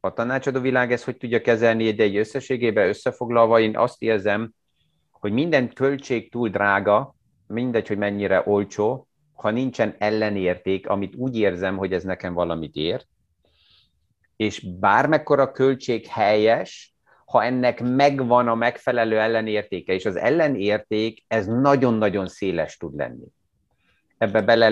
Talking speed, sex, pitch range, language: 130 wpm, male, 100-125 Hz, Hungarian